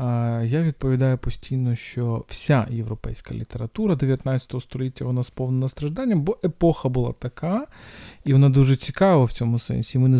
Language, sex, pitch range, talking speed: Ukrainian, male, 120-155 Hz, 145 wpm